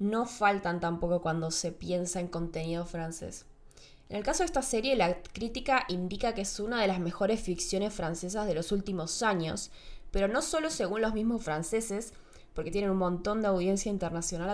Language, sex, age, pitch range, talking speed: Spanish, female, 20-39, 175-200 Hz, 180 wpm